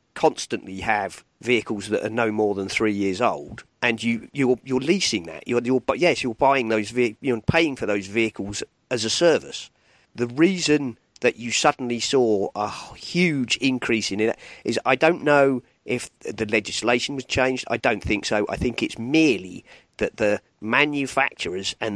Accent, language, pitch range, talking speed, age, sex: British, English, 115-155 Hz, 175 wpm, 40-59, male